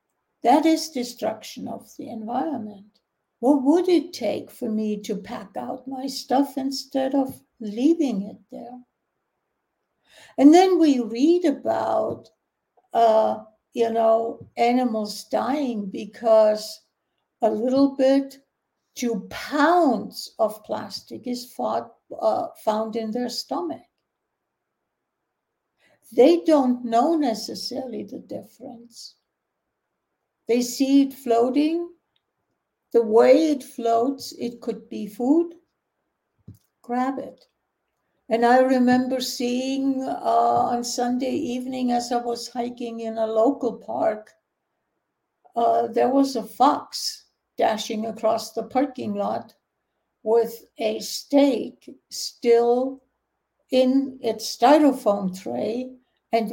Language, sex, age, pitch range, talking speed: English, female, 60-79, 230-275 Hz, 105 wpm